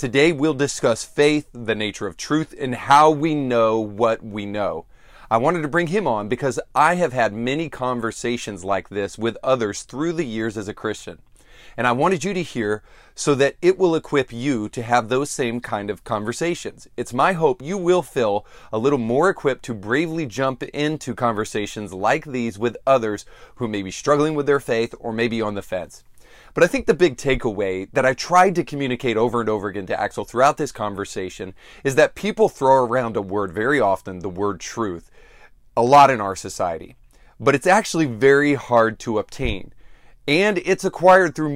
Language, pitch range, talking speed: English, 110-150 Hz, 195 wpm